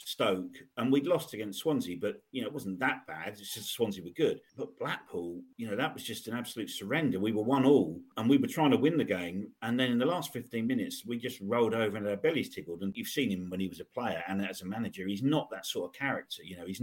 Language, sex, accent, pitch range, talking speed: English, male, British, 100-130 Hz, 275 wpm